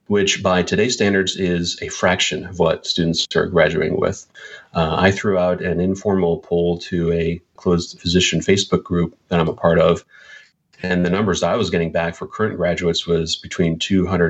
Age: 30-49